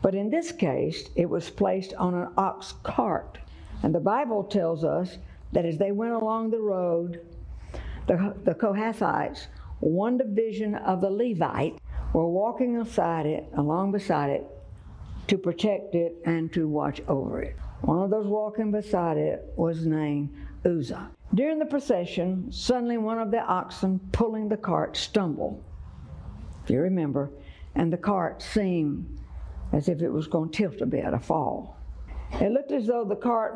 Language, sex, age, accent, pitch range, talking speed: English, female, 60-79, American, 150-210 Hz, 165 wpm